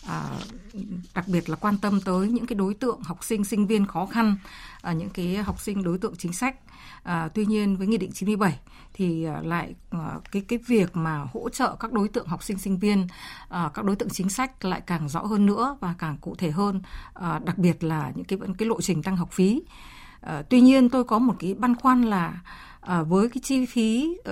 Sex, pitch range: female, 180-230 Hz